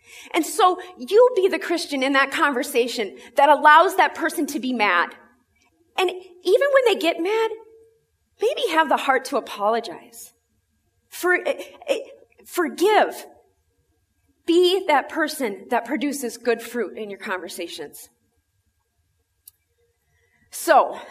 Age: 30-49